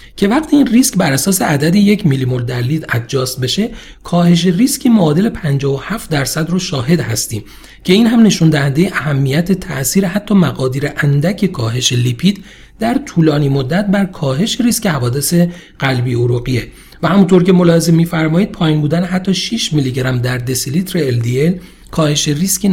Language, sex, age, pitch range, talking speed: Persian, male, 40-59, 135-190 Hz, 155 wpm